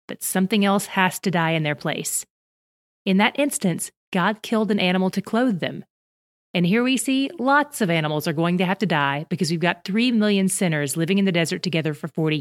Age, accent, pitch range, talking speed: 30-49, American, 170-220 Hz, 220 wpm